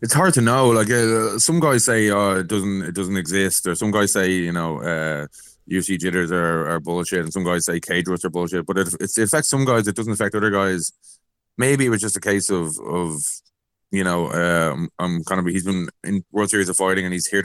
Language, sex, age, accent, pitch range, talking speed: English, male, 20-39, Irish, 85-100 Hz, 240 wpm